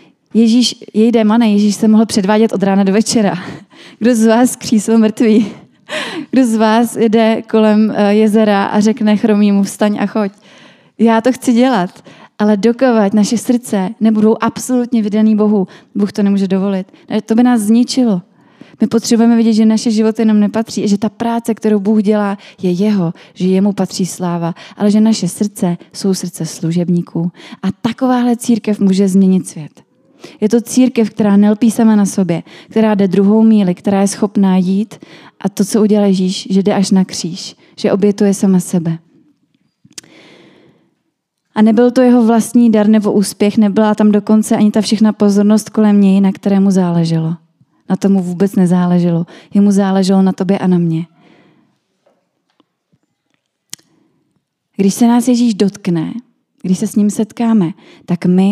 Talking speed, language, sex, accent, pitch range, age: 160 wpm, Czech, female, native, 195-225 Hz, 20-39